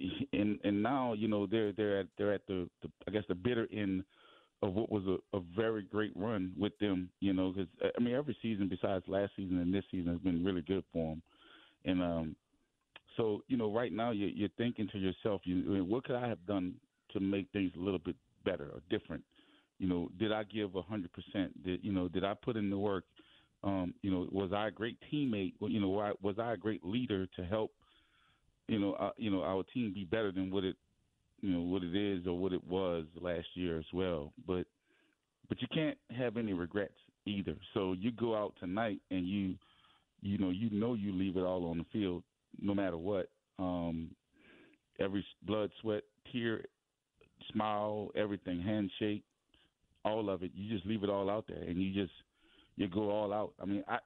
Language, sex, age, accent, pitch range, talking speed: English, male, 30-49, American, 90-105 Hz, 210 wpm